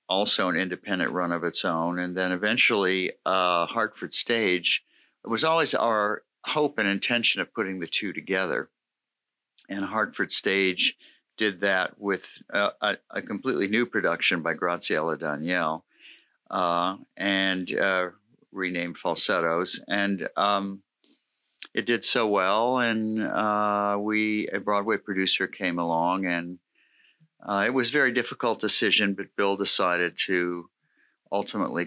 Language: English